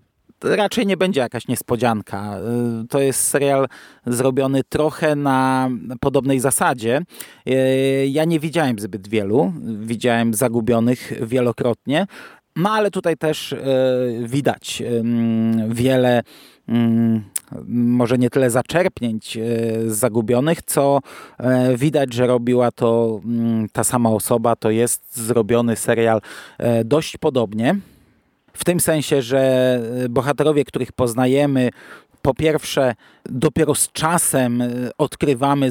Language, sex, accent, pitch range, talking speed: Polish, male, native, 120-145 Hz, 100 wpm